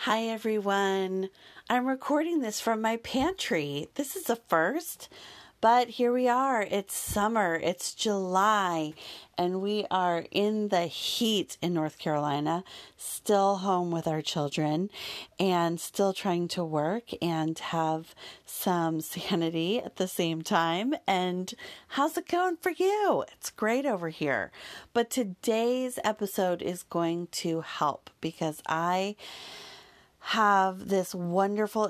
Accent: American